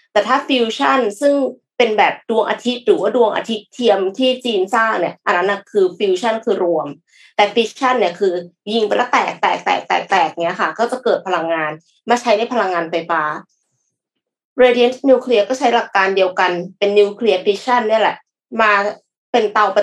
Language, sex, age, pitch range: Thai, female, 20-39, 185-245 Hz